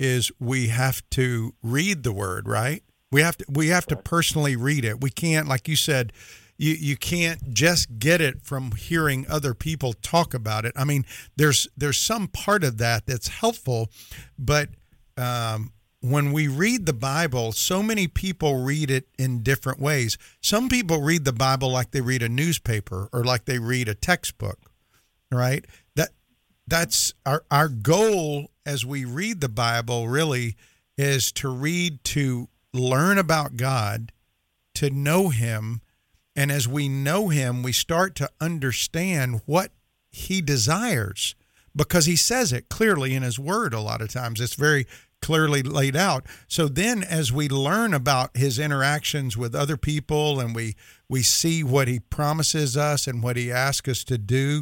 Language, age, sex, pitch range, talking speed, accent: English, 50-69, male, 120-155 Hz, 165 wpm, American